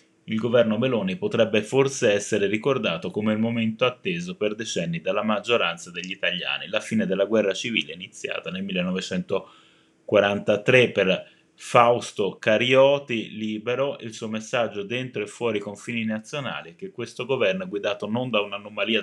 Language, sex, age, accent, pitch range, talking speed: Italian, male, 20-39, native, 100-120 Hz, 145 wpm